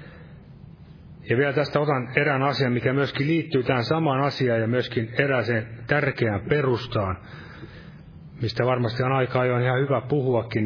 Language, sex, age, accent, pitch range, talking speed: Finnish, male, 30-49, native, 110-140 Hz, 145 wpm